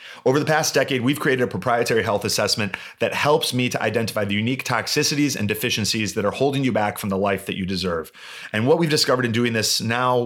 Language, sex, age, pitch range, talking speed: English, male, 30-49, 110-130 Hz, 230 wpm